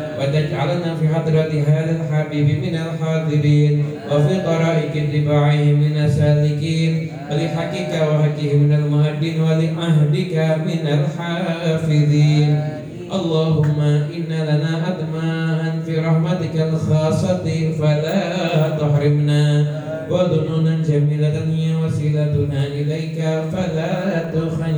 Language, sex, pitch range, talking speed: Indonesian, male, 150-160 Hz, 65 wpm